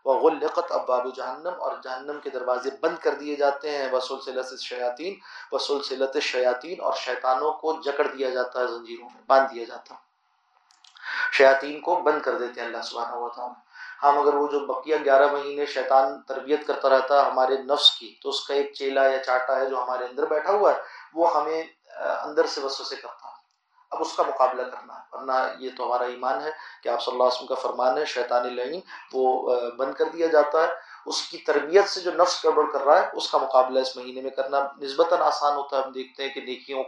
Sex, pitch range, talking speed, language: male, 130-155 Hz, 215 wpm, Arabic